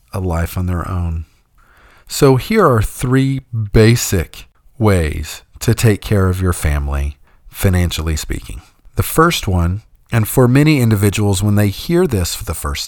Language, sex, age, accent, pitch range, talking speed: English, male, 40-59, American, 95-135 Hz, 150 wpm